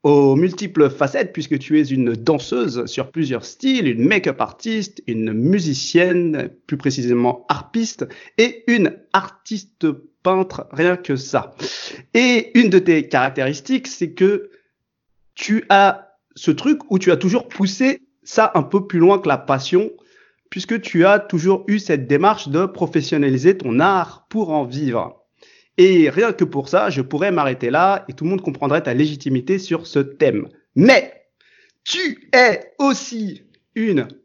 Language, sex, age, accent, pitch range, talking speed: French, male, 40-59, French, 140-205 Hz, 155 wpm